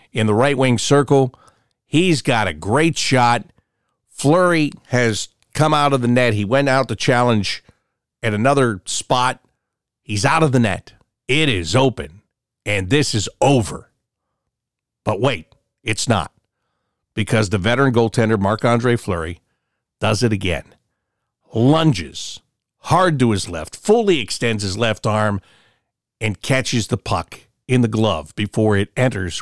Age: 50-69